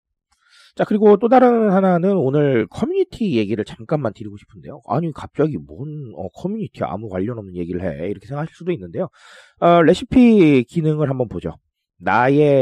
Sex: male